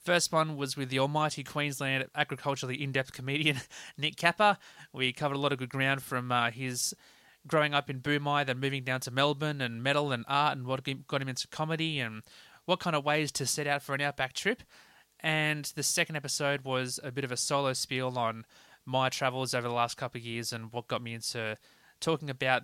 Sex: male